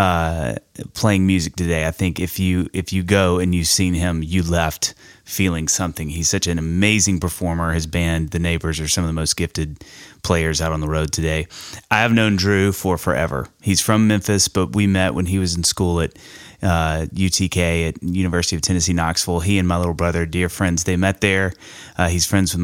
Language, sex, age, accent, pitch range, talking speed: English, male, 30-49, American, 85-100 Hz, 210 wpm